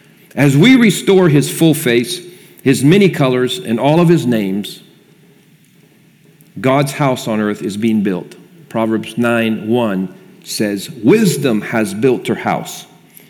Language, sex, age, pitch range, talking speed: English, male, 50-69, 120-165 Hz, 135 wpm